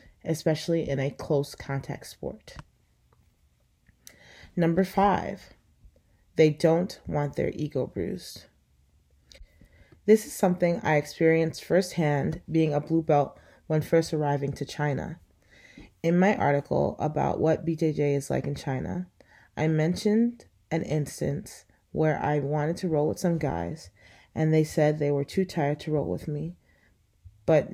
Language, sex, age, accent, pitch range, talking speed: English, female, 30-49, American, 140-175 Hz, 135 wpm